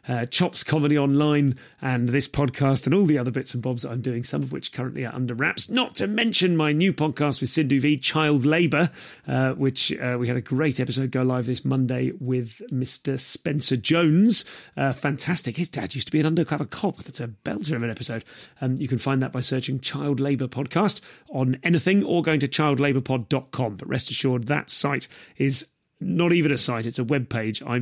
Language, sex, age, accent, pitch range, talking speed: English, male, 40-59, British, 130-155 Hz, 210 wpm